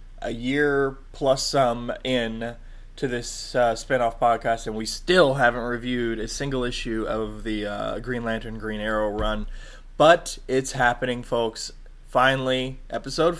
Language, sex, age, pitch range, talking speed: English, male, 20-39, 115-140 Hz, 145 wpm